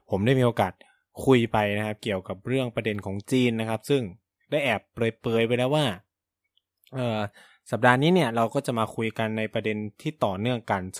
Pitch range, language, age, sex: 105-130 Hz, Thai, 20-39, male